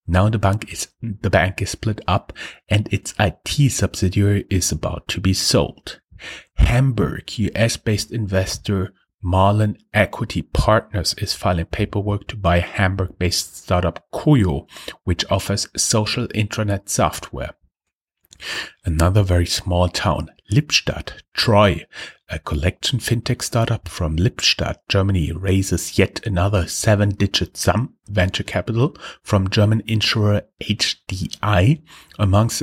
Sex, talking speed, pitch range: male, 120 wpm, 95-110 Hz